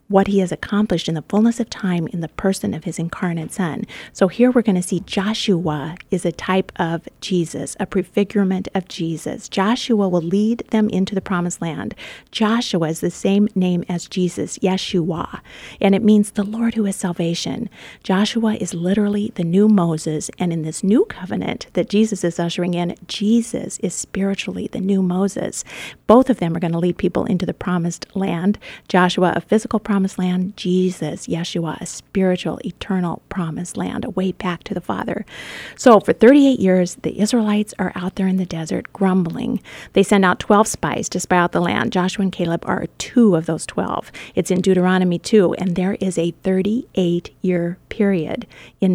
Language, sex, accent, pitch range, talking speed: English, female, American, 175-205 Hz, 185 wpm